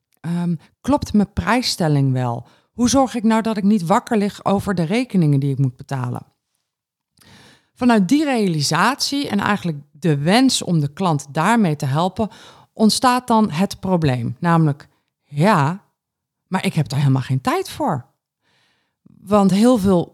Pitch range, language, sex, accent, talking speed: 160-215 Hz, Dutch, female, Dutch, 150 wpm